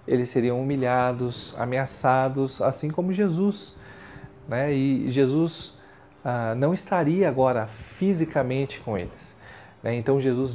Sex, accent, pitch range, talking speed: male, Brazilian, 125-155 Hz, 115 wpm